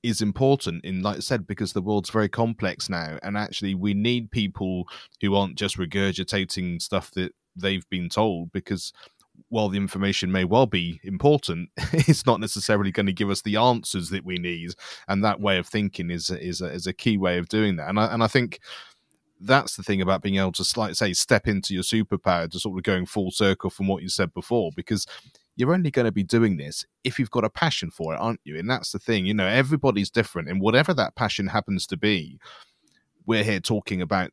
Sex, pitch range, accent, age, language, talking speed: male, 95-115 Hz, British, 30-49, English, 220 wpm